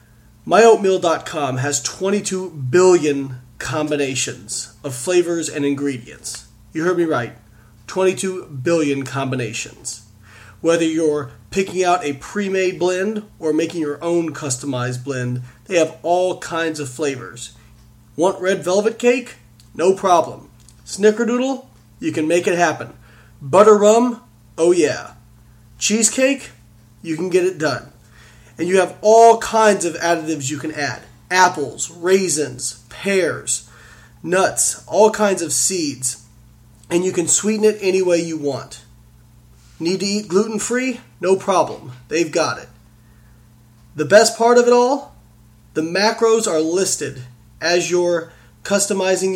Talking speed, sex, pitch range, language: 130 wpm, male, 120-190 Hz, English